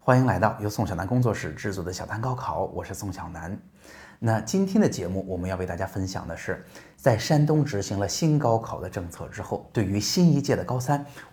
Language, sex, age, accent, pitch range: Chinese, male, 20-39, native, 95-130 Hz